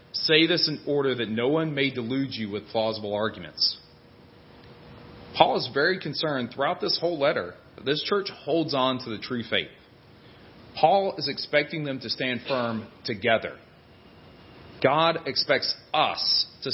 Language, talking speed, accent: English, 150 wpm, American